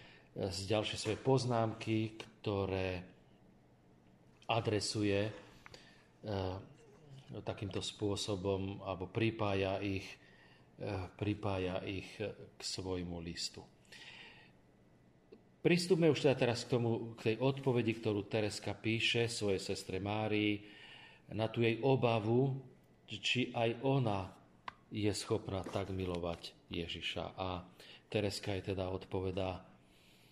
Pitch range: 90-115 Hz